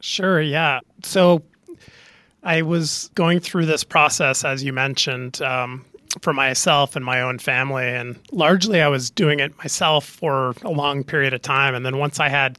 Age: 30-49